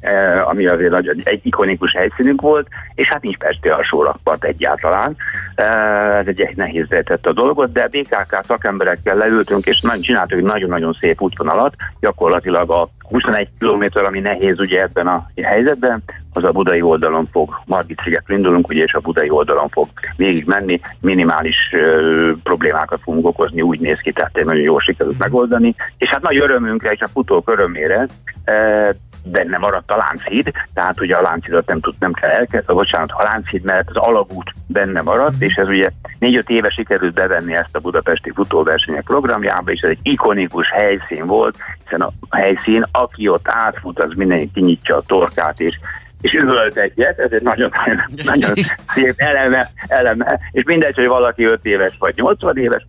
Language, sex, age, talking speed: Hungarian, male, 60-79, 170 wpm